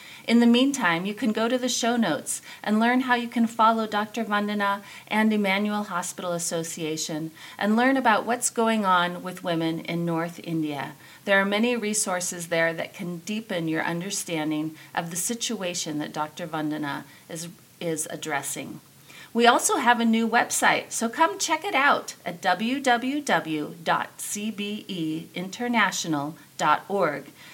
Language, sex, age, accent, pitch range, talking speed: English, female, 40-59, American, 170-235 Hz, 140 wpm